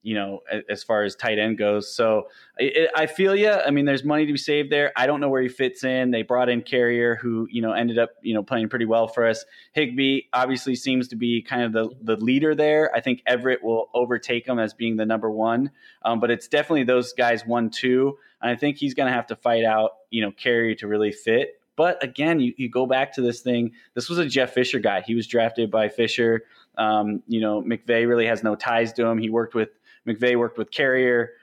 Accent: American